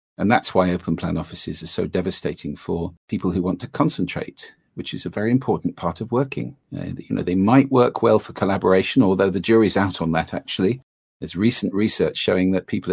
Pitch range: 90-115 Hz